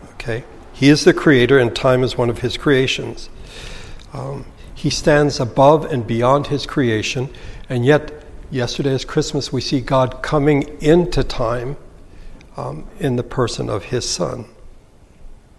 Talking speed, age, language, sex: 140 wpm, 60-79, English, male